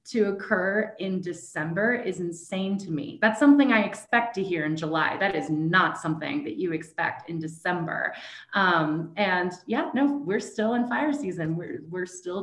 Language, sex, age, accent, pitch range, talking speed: English, female, 20-39, American, 165-210 Hz, 180 wpm